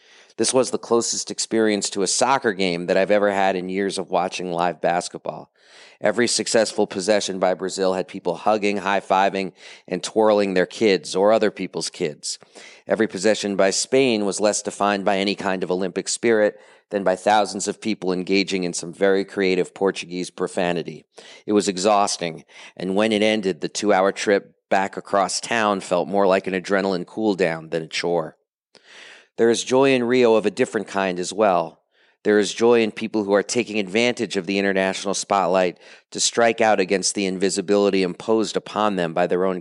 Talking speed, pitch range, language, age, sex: 180 wpm, 95-105 Hz, English, 40-59, male